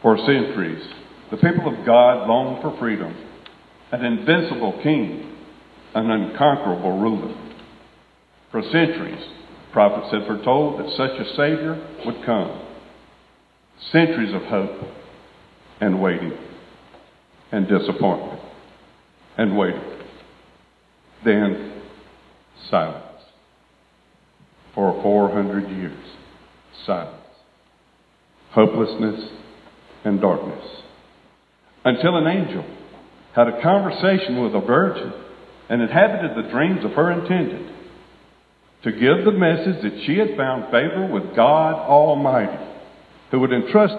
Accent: American